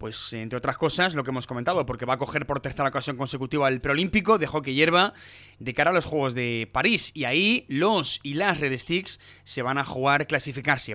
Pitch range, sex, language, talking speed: 130-160 Hz, male, Spanish, 220 wpm